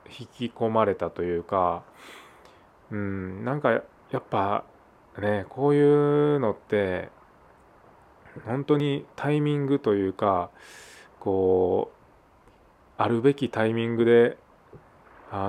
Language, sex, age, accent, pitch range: Japanese, male, 20-39, native, 95-115 Hz